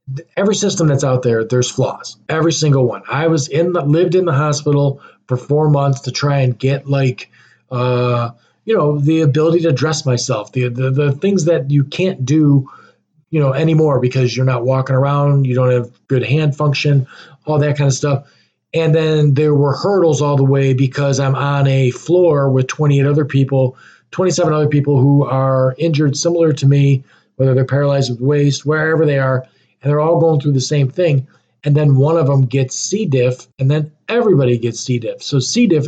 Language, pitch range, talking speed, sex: English, 130-155 Hz, 200 wpm, male